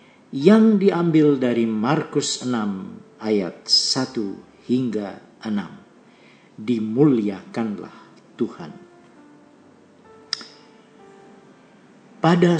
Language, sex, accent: Indonesian, male, native